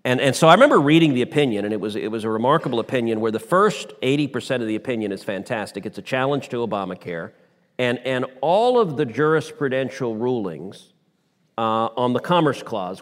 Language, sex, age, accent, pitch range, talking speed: English, male, 40-59, American, 125-165 Hz, 195 wpm